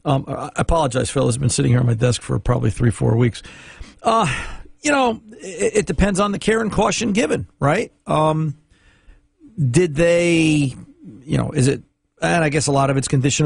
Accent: American